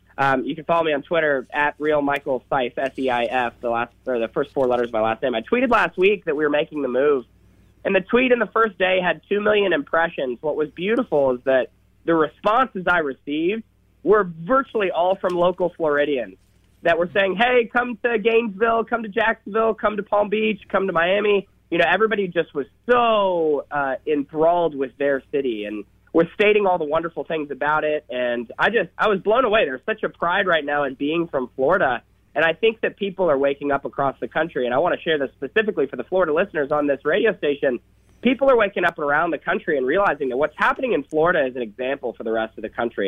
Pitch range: 135-200 Hz